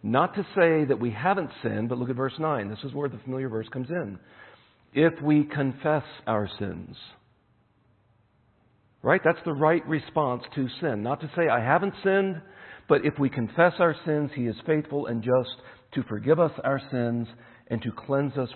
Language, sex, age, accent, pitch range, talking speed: English, male, 50-69, American, 115-150 Hz, 190 wpm